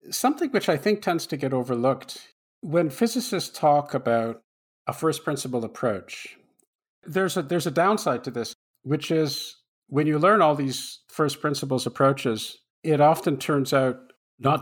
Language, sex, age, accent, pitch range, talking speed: English, male, 50-69, American, 120-155 Hz, 155 wpm